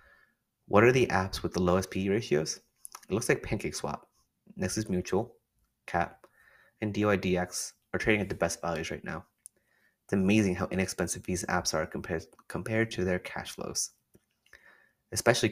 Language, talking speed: English, 160 wpm